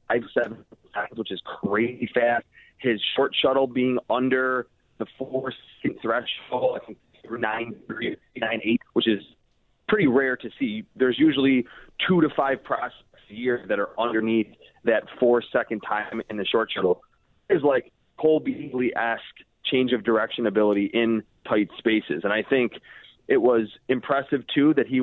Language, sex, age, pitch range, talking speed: English, male, 30-49, 115-140 Hz, 160 wpm